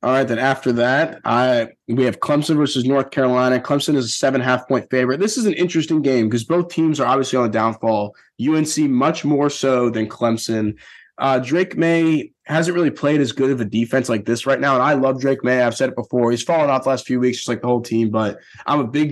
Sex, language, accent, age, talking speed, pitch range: male, English, American, 20-39, 245 wpm, 115-145 Hz